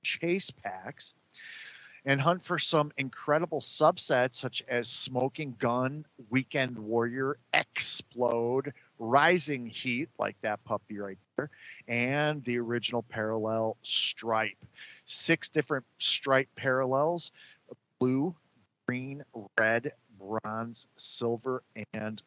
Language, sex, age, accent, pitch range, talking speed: English, male, 40-59, American, 110-140 Hz, 100 wpm